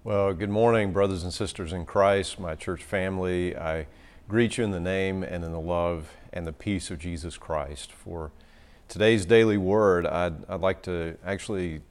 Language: English